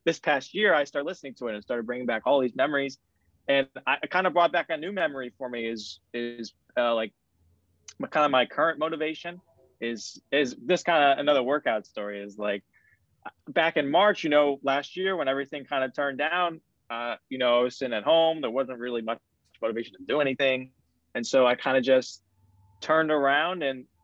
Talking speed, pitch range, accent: 210 wpm, 115-155 Hz, American